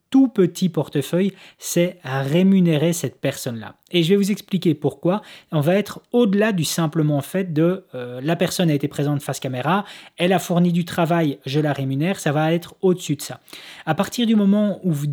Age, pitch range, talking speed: 30-49, 150-195 Hz, 200 wpm